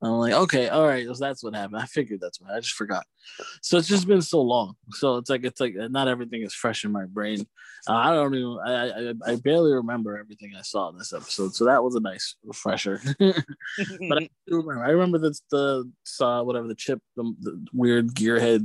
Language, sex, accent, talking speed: English, male, American, 230 wpm